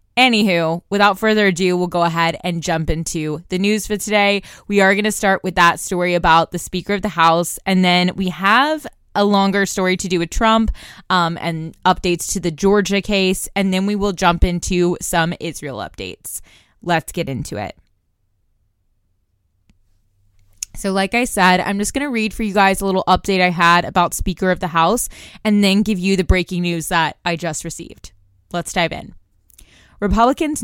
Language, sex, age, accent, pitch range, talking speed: English, female, 20-39, American, 170-205 Hz, 190 wpm